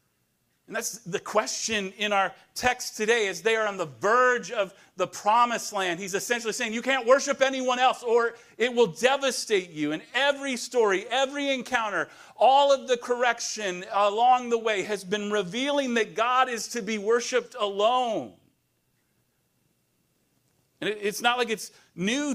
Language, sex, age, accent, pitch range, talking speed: English, male, 40-59, American, 210-250 Hz, 160 wpm